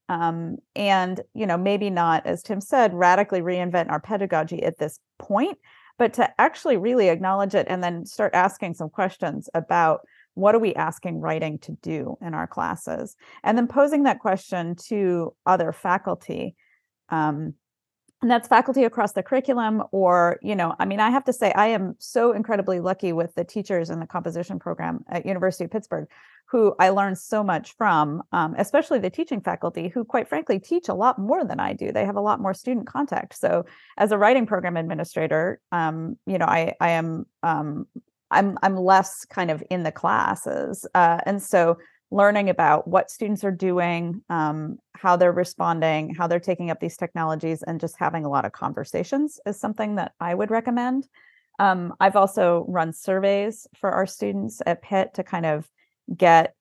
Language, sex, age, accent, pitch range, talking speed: English, female, 30-49, American, 170-210 Hz, 185 wpm